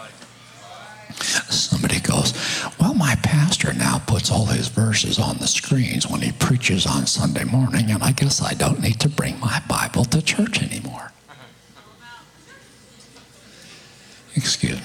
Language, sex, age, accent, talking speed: English, male, 60-79, American, 135 wpm